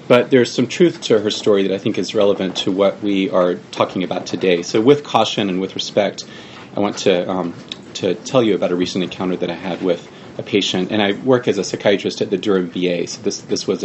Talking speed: 245 wpm